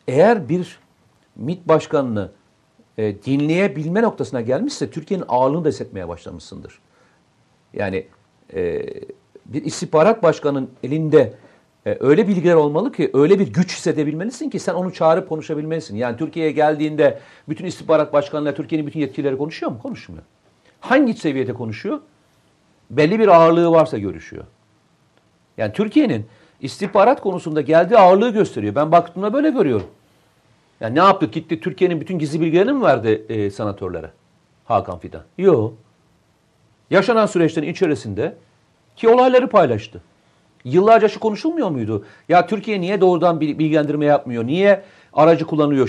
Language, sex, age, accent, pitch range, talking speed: Turkish, male, 60-79, native, 135-190 Hz, 130 wpm